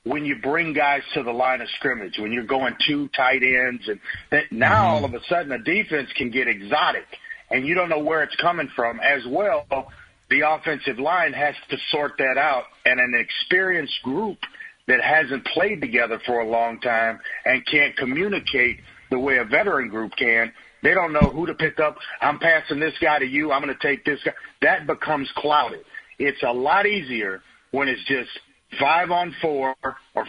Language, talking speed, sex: English, 195 wpm, male